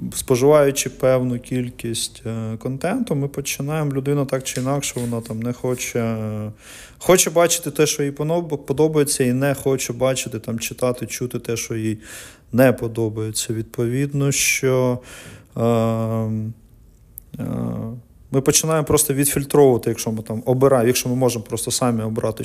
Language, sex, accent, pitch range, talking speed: Ukrainian, male, native, 110-130 Hz, 135 wpm